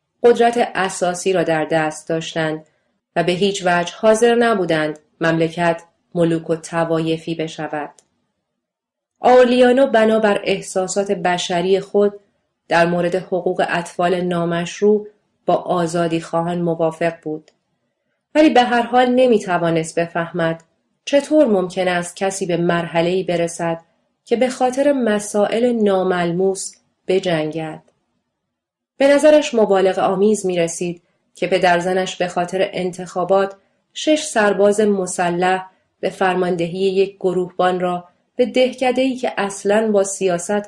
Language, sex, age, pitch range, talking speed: English, female, 30-49, 170-205 Hz, 115 wpm